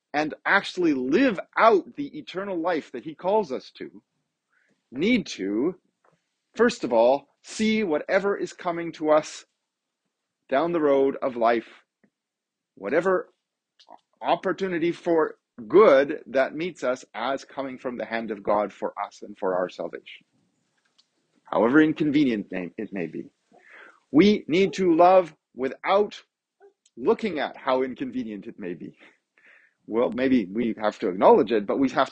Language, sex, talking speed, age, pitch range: English, male, 140 wpm, 40-59, 160-220 Hz